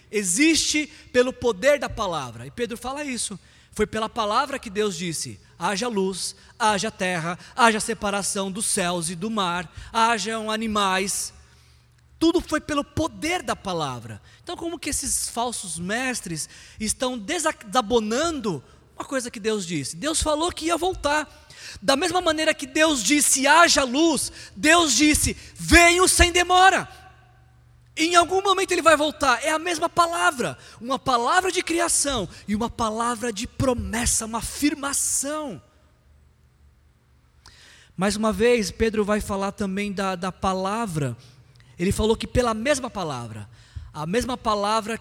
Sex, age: male, 20-39